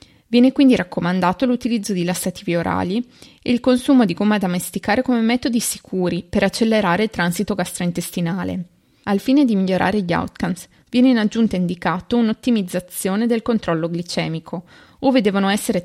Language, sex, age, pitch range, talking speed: Italian, female, 20-39, 180-235 Hz, 150 wpm